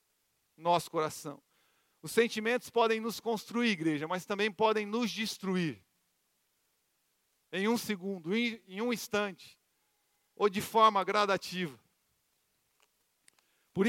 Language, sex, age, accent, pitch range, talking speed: Portuguese, male, 50-69, Brazilian, 170-215 Hz, 105 wpm